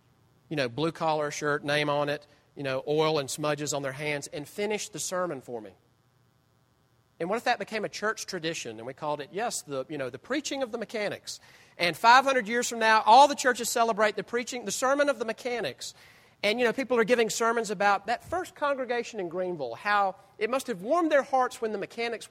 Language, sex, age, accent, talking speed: English, male, 40-59, American, 220 wpm